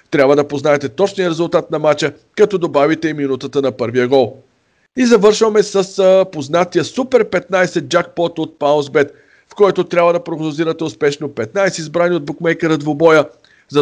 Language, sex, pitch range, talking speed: Bulgarian, male, 140-170 Hz, 150 wpm